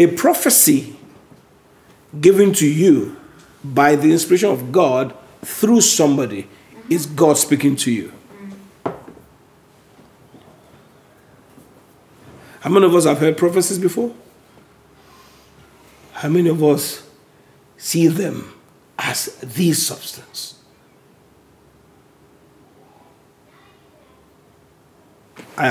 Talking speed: 80 wpm